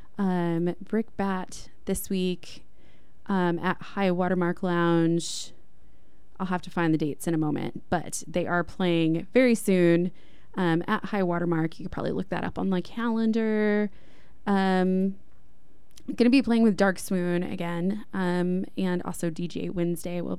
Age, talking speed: 20-39, 155 wpm